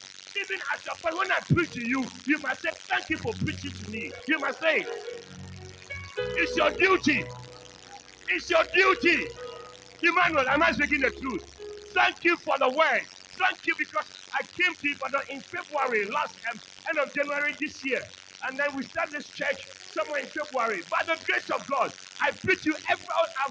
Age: 50-69